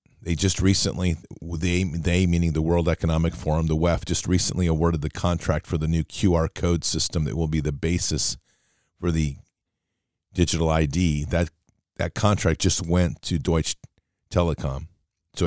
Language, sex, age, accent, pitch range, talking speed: English, male, 40-59, American, 80-95 Hz, 160 wpm